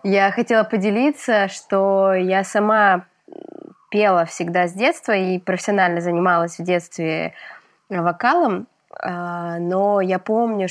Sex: female